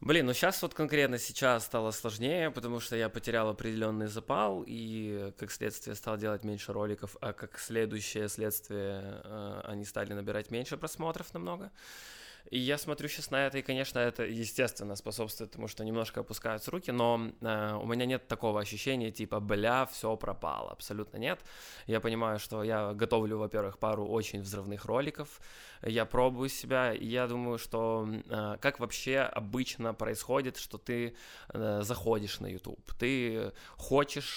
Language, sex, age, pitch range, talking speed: Ukrainian, male, 20-39, 110-130 Hz, 155 wpm